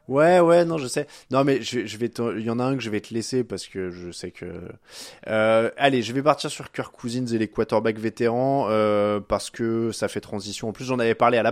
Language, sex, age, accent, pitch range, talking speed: French, male, 20-39, French, 115-155 Hz, 265 wpm